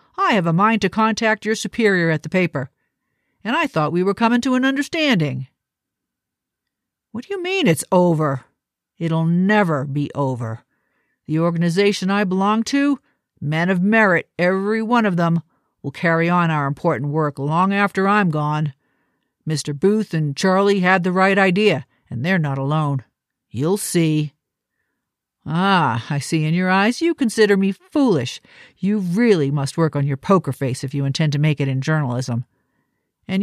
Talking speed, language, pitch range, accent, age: 165 wpm, English, 145-200 Hz, American, 50-69